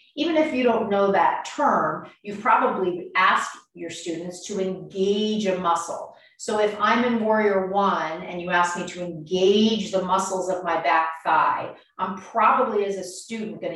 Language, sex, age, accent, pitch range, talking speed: English, female, 40-59, American, 175-225 Hz, 175 wpm